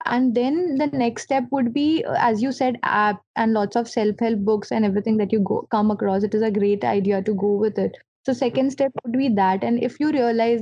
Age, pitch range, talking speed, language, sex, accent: 20-39, 215-245 Hz, 235 wpm, Hindi, female, native